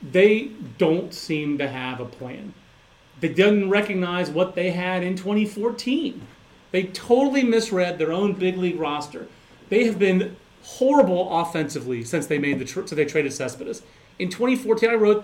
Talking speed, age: 160 wpm, 30-49